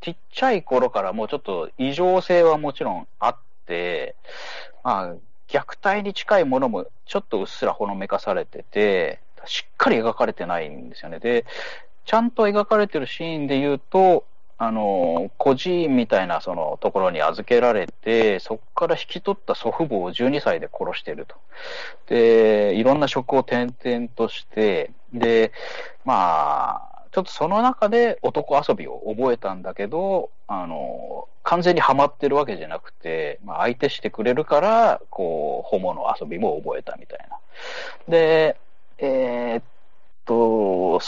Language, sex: Japanese, male